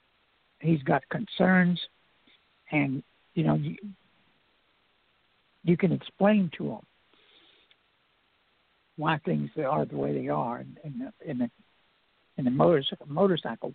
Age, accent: 60-79, American